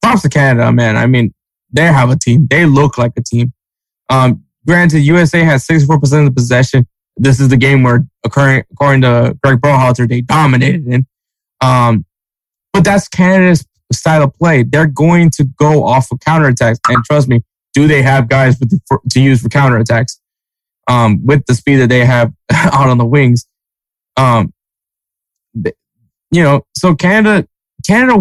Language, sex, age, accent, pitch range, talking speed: English, male, 20-39, American, 120-150 Hz, 170 wpm